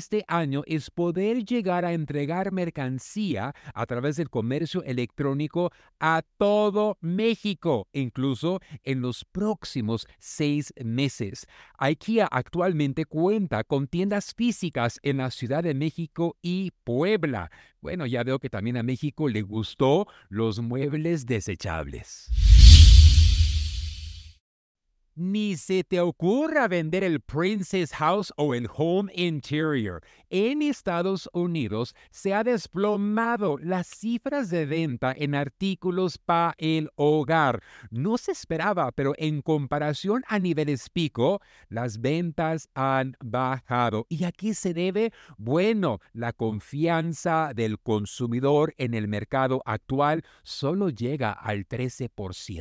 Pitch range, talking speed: 120-180 Hz, 120 wpm